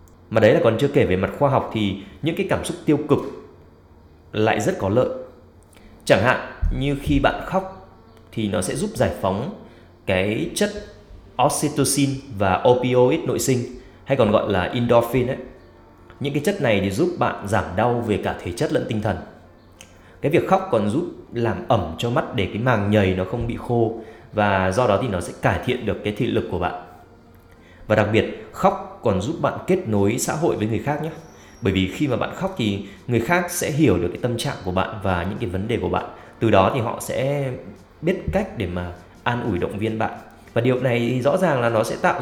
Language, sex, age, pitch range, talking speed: Vietnamese, male, 20-39, 95-130 Hz, 220 wpm